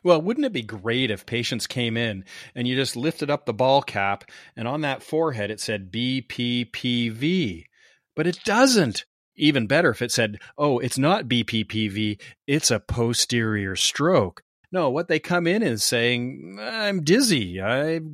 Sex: male